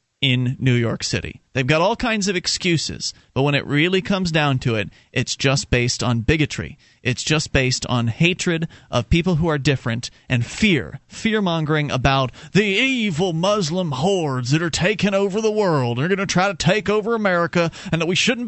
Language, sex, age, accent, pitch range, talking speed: English, male, 40-59, American, 120-160 Hz, 195 wpm